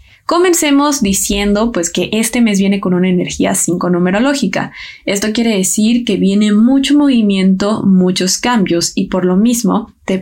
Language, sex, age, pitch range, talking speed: Spanish, female, 20-39, 185-225 Hz, 155 wpm